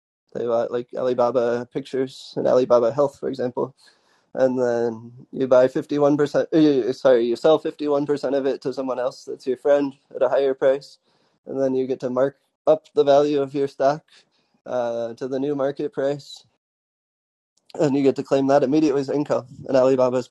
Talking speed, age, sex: 190 wpm, 20-39, male